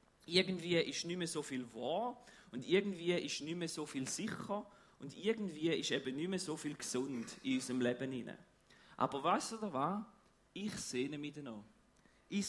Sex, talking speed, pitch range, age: male, 185 wpm, 135-200 Hz, 40-59